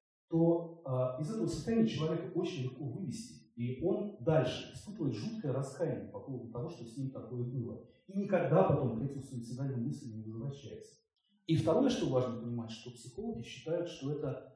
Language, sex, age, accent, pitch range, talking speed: Russian, male, 30-49, native, 115-150 Hz, 170 wpm